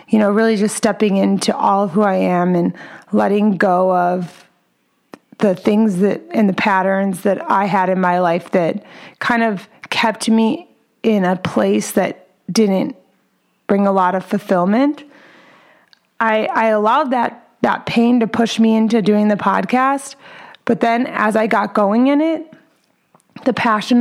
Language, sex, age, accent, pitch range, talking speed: English, female, 30-49, American, 200-235 Hz, 160 wpm